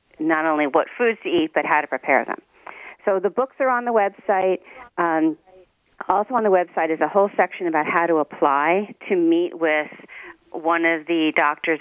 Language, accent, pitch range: English, American, 150-180 Hz